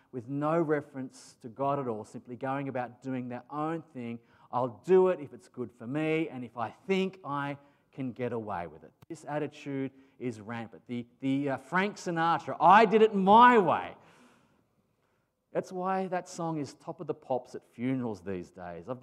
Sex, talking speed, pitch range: male, 190 wpm, 125-170 Hz